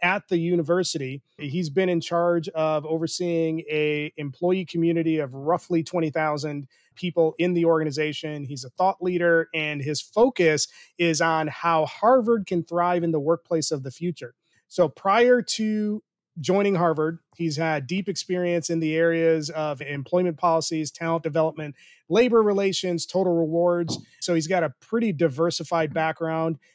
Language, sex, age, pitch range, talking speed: English, male, 30-49, 155-185 Hz, 150 wpm